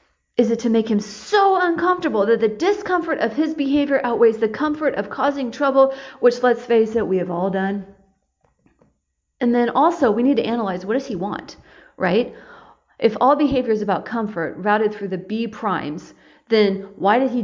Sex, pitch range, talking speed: female, 205-275 Hz, 185 wpm